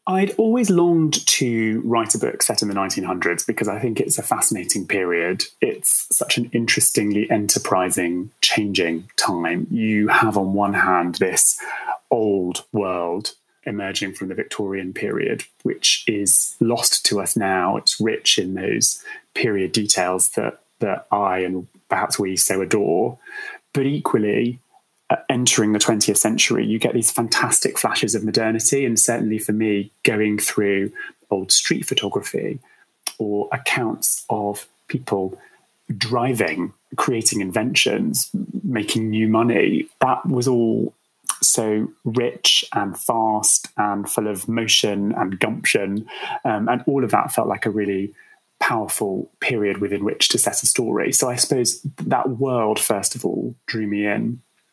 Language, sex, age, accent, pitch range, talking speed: English, male, 30-49, British, 100-120 Hz, 145 wpm